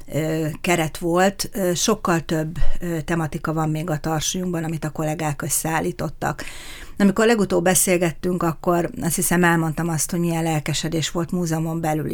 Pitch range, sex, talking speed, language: 155-180 Hz, female, 135 wpm, Hungarian